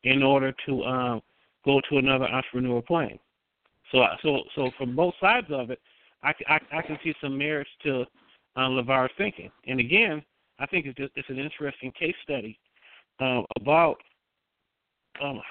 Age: 50-69